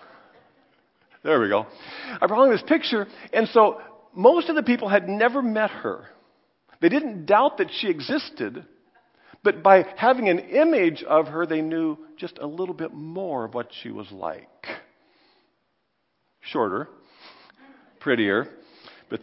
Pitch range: 155-215 Hz